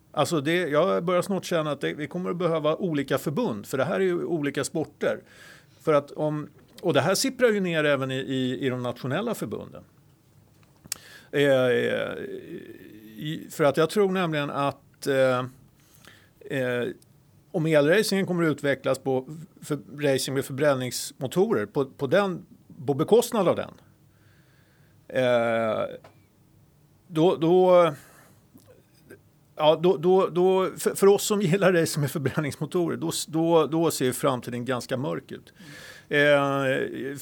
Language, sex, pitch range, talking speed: Swedish, male, 135-175 Hz, 140 wpm